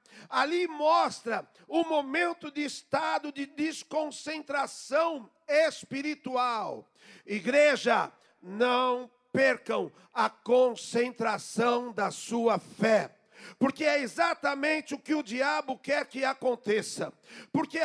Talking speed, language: 95 wpm, Portuguese